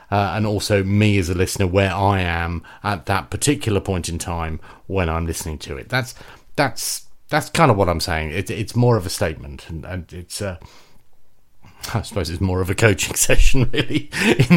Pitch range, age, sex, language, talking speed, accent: 90-110 Hz, 40-59, male, English, 200 wpm, British